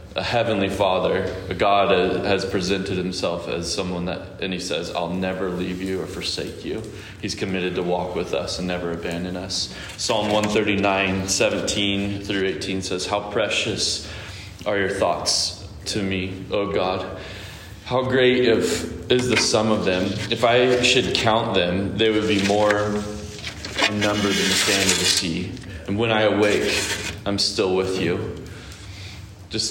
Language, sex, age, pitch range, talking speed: English, male, 20-39, 90-105 Hz, 165 wpm